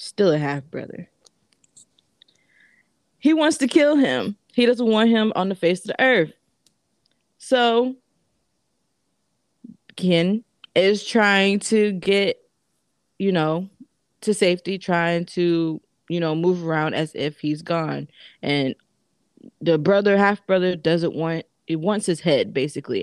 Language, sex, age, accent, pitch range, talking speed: English, female, 20-39, American, 155-200 Hz, 130 wpm